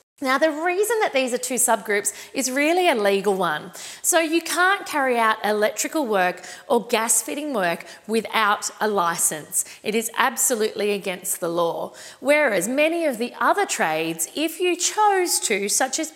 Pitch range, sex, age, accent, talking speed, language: 210-285 Hz, female, 40-59, Australian, 165 wpm, English